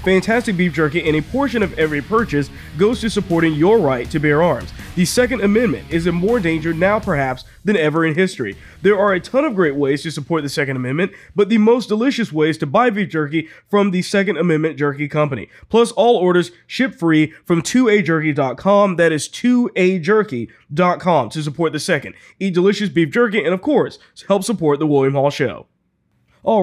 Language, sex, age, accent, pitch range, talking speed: English, male, 20-39, American, 150-205 Hz, 190 wpm